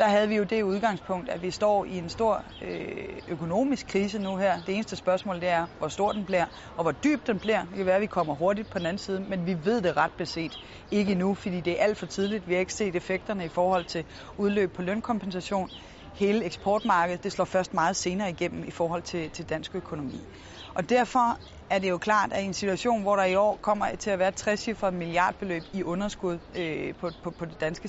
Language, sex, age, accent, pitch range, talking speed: Danish, female, 30-49, native, 175-210 Hz, 235 wpm